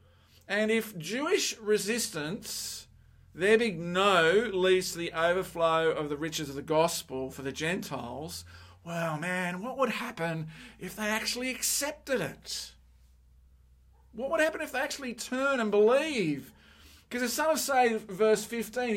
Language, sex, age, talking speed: English, male, 50-69, 145 wpm